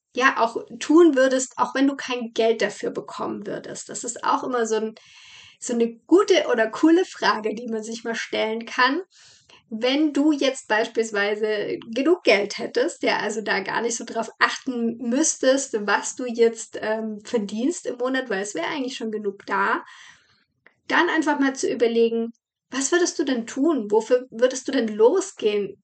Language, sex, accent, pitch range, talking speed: German, female, German, 225-275 Hz, 170 wpm